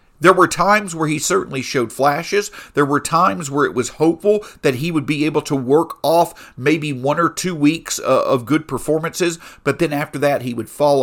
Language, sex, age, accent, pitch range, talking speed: English, male, 50-69, American, 130-185 Hz, 205 wpm